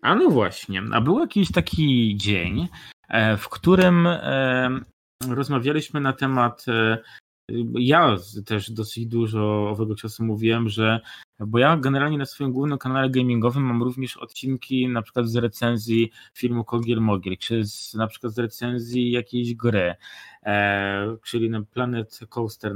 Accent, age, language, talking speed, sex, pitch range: native, 20-39, Polish, 130 wpm, male, 110-140 Hz